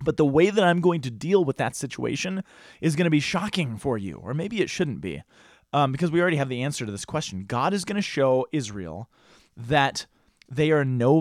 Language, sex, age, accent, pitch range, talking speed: English, male, 30-49, American, 130-175 Hz, 230 wpm